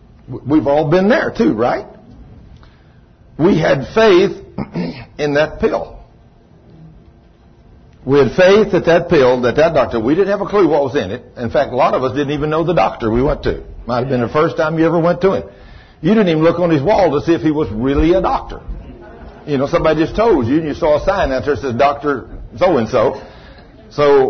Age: 60-79